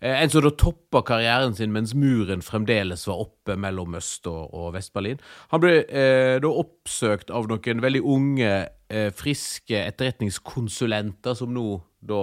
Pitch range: 95-125 Hz